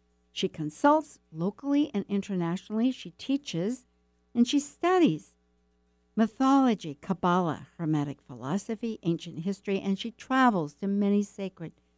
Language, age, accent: English, 60-79, American